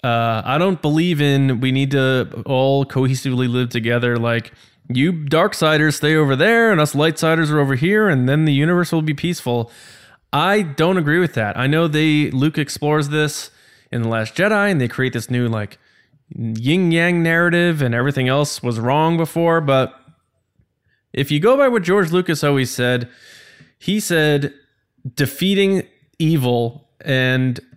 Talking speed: 165 wpm